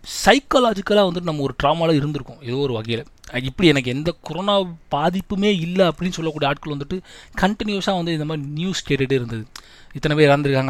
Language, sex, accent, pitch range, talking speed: Tamil, male, native, 130-175 Hz, 165 wpm